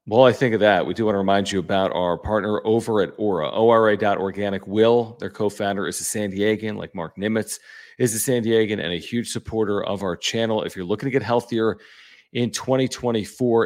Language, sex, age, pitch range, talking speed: English, male, 40-59, 100-120 Hz, 205 wpm